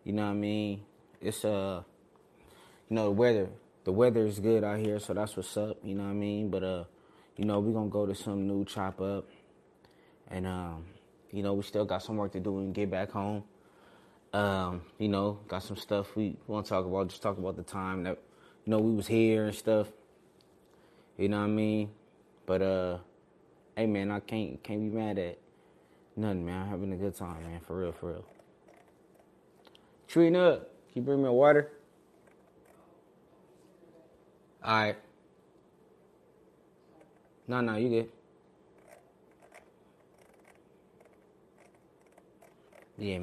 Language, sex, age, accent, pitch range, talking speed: English, male, 20-39, American, 95-110 Hz, 165 wpm